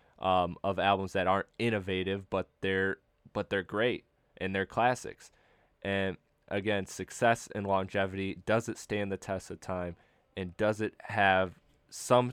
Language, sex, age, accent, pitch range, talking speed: English, male, 20-39, American, 95-110 Hz, 150 wpm